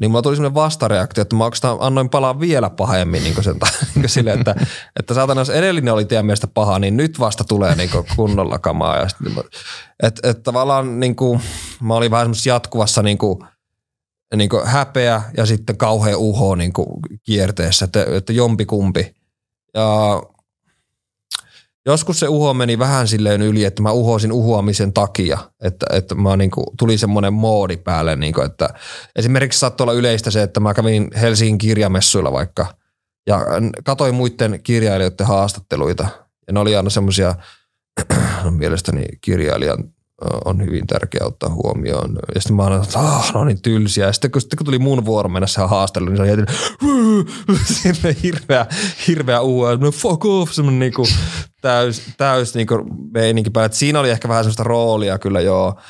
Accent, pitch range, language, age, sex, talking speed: native, 100-125 Hz, Finnish, 20-39, male, 145 wpm